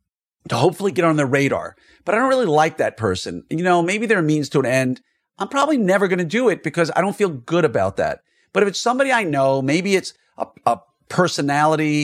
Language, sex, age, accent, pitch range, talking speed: English, male, 40-59, American, 125-175 Hz, 230 wpm